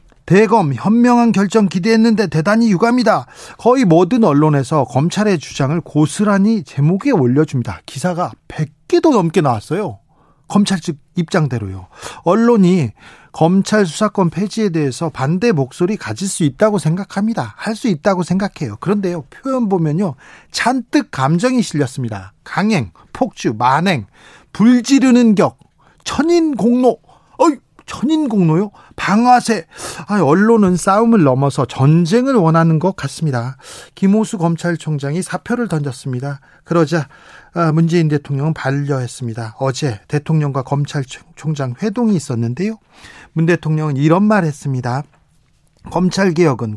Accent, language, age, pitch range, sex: native, Korean, 40-59, 140-205 Hz, male